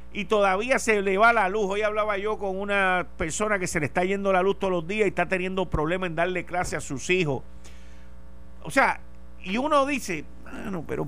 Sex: male